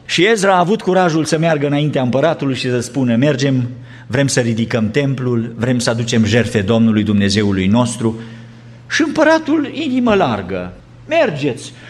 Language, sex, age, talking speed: Romanian, male, 50-69, 145 wpm